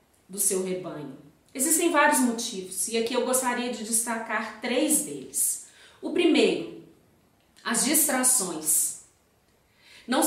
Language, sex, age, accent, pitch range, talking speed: Portuguese, female, 40-59, Brazilian, 215-270 Hz, 110 wpm